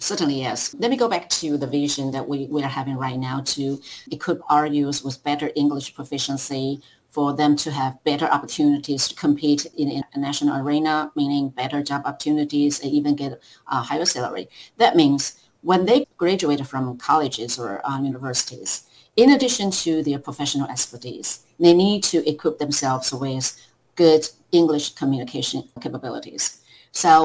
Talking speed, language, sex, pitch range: 165 wpm, English, female, 140-165 Hz